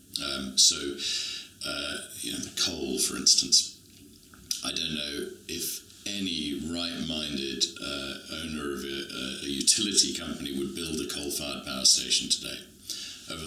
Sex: male